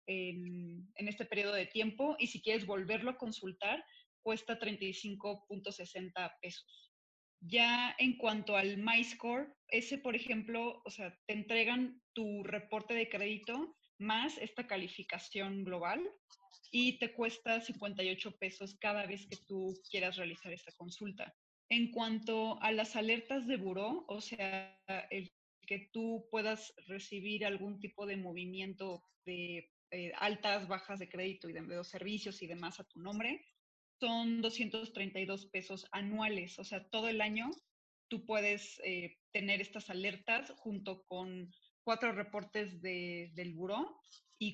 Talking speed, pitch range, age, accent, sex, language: 140 wpm, 190-230 Hz, 20-39, Mexican, female, Spanish